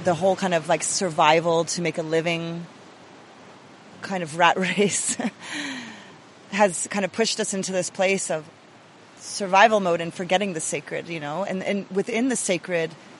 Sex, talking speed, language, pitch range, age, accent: female, 165 wpm, English, 170-205 Hz, 30-49, American